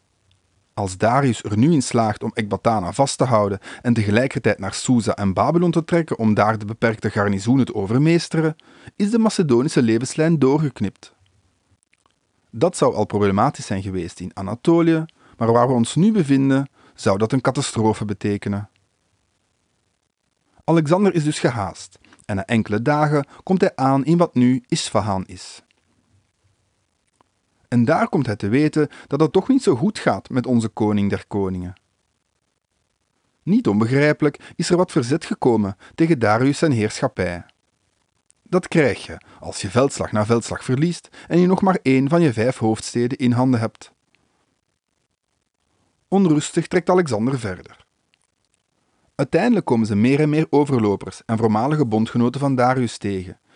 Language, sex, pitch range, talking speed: English, male, 100-150 Hz, 150 wpm